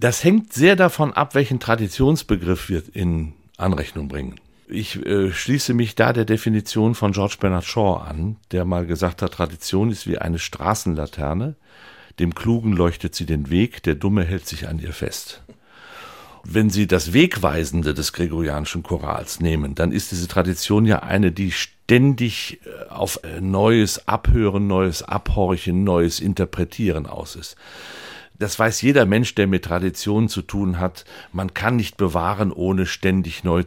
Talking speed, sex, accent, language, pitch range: 155 wpm, male, German, German, 85-105 Hz